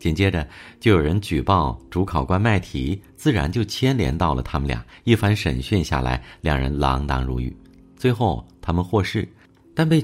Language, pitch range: Chinese, 75-105 Hz